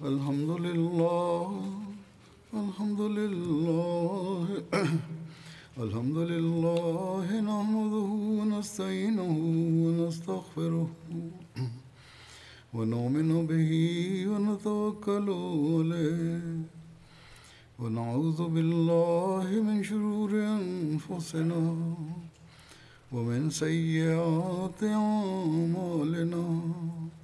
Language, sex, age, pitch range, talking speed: Indonesian, male, 60-79, 160-205 Hz, 45 wpm